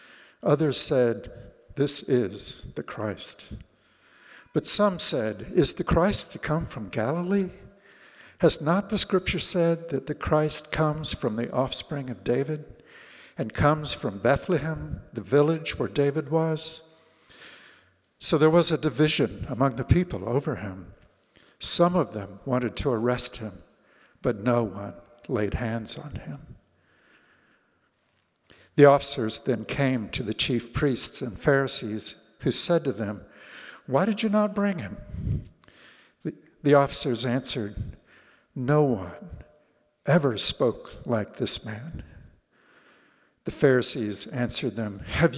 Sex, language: male, English